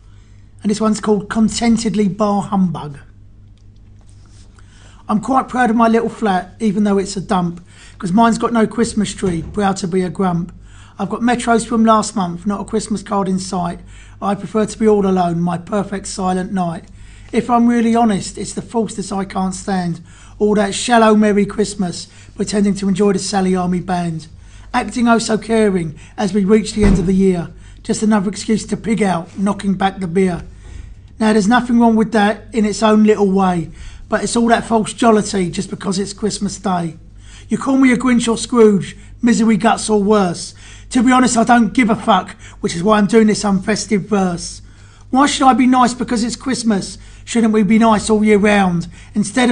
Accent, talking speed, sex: British, 195 wpm, male